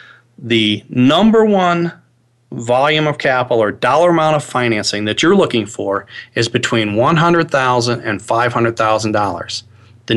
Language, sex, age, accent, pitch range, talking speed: English, male, 40-59, American, 115-150 Hz, 125 wpm